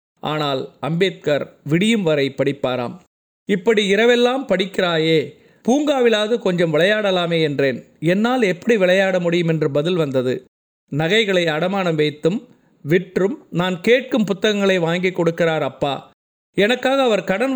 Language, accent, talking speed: Tamil, native, 110 wpm